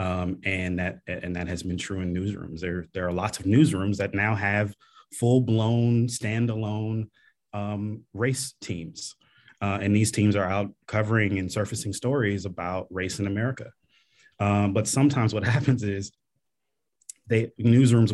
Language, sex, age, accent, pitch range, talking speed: English, male, 30-49, American, 100-130 Hz, 150 wpm